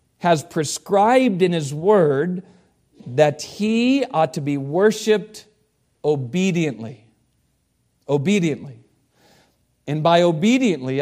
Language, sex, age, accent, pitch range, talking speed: English, male, 40-59, American, 150-210 Hz, 85 wpm